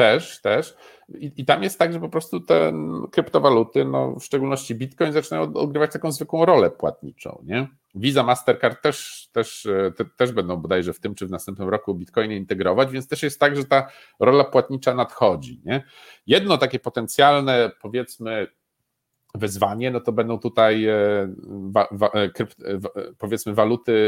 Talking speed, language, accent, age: 170 wpm, Polish, native, 50-69